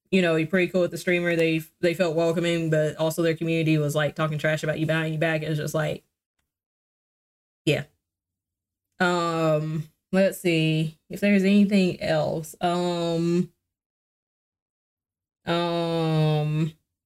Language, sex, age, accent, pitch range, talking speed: English, female, 20-39, American, 160-190 Hz, 135 wpm